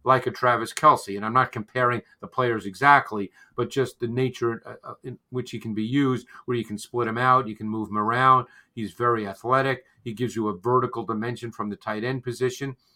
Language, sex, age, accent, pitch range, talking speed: English, male, 50-69, American, 115-155 Hz, 215 wpm